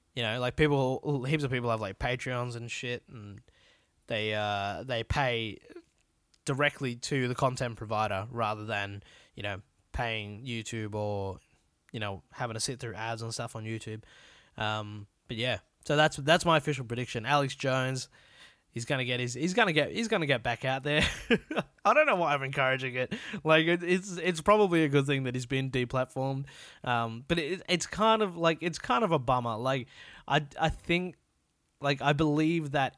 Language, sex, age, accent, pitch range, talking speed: English, male, 20-39, Australian, 115-150 Hz, 185 wpm